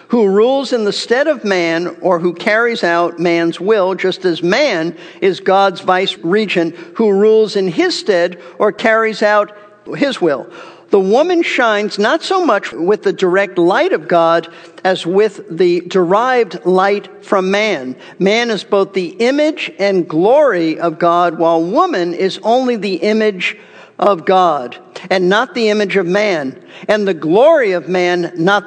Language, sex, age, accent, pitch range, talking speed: English, male, 50-69, American, 175-230 Hz, 165 wpm